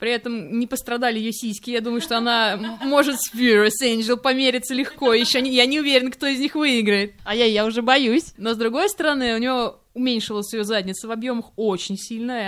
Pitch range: 195-245 Hz